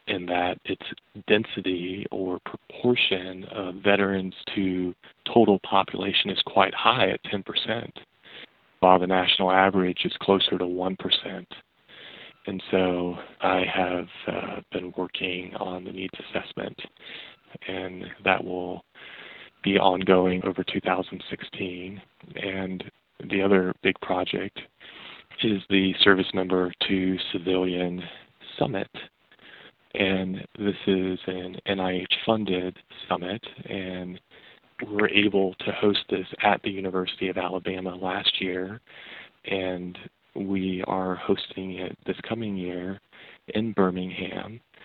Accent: American